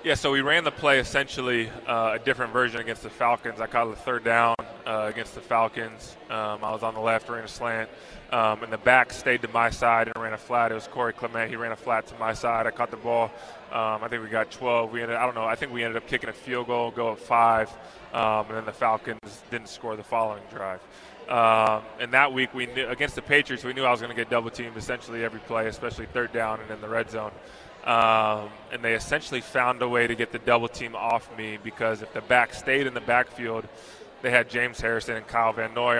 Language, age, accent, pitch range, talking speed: English, 20-39, American, 110-120 Hz, 250 wpm